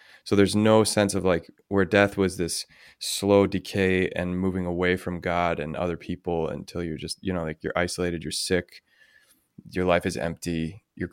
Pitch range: 85-100 Hz